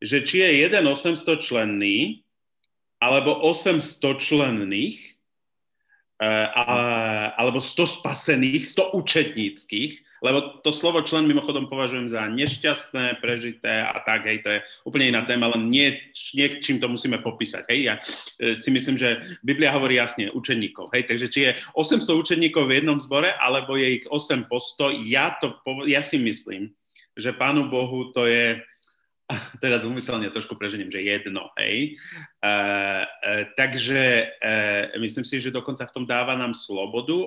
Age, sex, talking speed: 30-49, male, 145 wpm